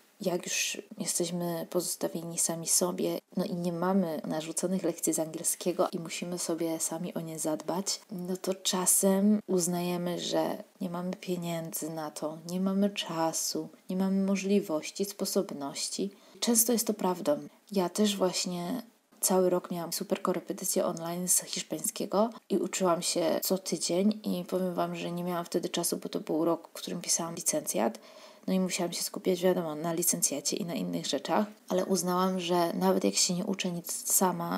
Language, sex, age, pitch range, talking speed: Polish, female, 20-39, 175-200 Hz, 165 wpm